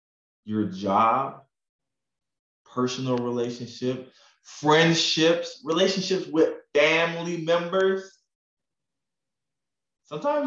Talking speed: 55 wpm